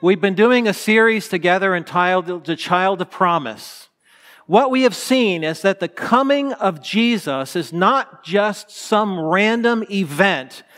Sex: male